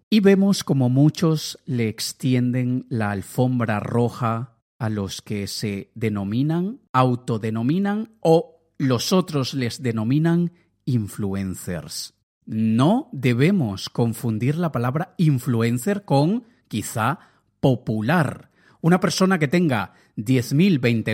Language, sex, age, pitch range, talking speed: Spanish, male, 40-59, 115-170 Hz, 100 wpm